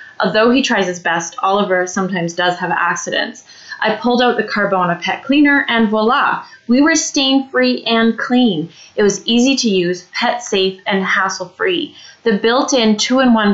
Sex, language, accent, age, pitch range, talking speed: female, English, American, 20-39, 185-235 Hz, 155 wpm